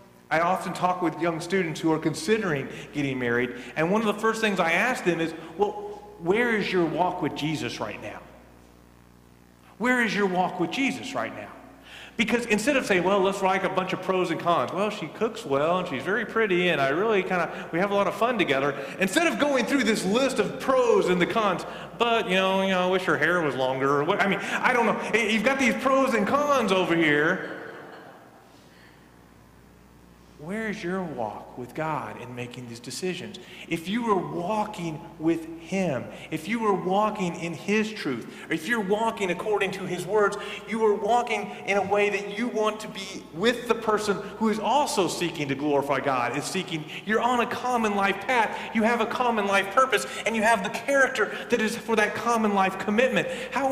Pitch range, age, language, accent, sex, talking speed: 165-220 Hz, 40-59, English, American, male, 205 wpm